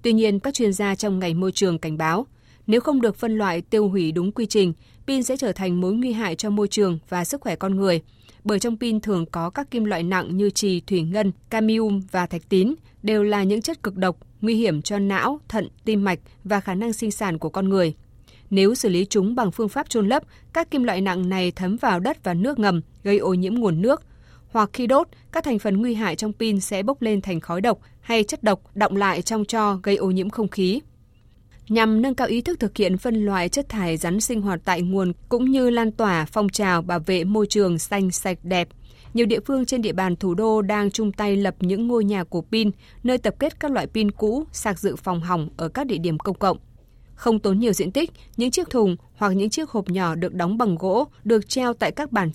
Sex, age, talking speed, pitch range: female, 20-39, 245 wpm, 185-225 Hz